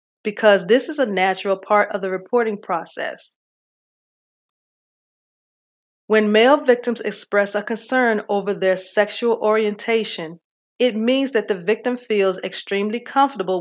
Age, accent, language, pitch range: 40-59, American, English, 185-235 Hz